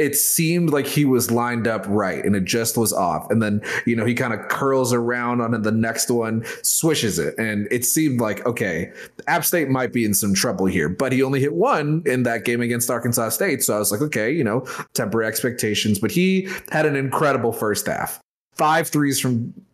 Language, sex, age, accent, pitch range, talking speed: English, male, 30-49, American, 110-135 Hz, 215 wpm